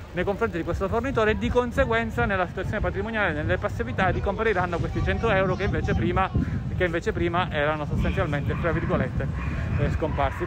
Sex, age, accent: male, 30-49, native